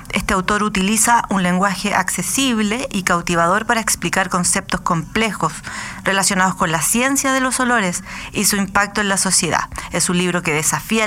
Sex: female